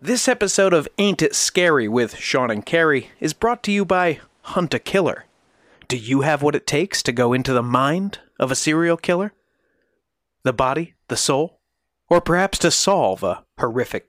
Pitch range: 130-180 Hz